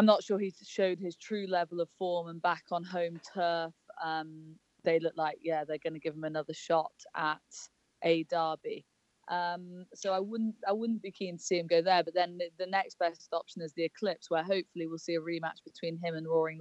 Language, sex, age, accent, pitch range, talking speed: English, female, 20-39, British, 165-190 Hz, 225 wpm